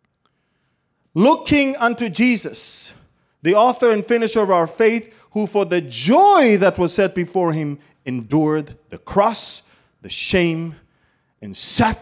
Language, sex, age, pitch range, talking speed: English, male, 30-49, 115-170 Hz, 130 wpm